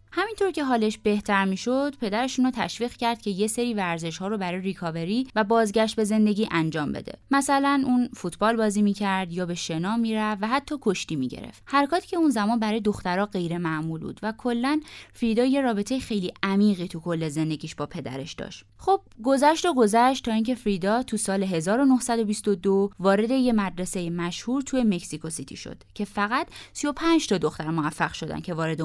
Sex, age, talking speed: female, 20-39, 175 wpm